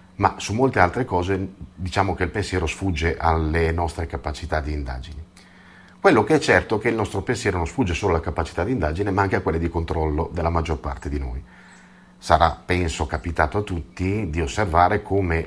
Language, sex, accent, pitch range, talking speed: Italian, male, native, 80-100 Hz, 195 wpm